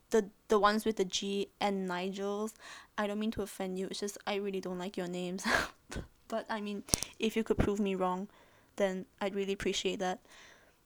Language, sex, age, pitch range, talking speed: English, female, 10-29, 200-250 Hz, 200 wpm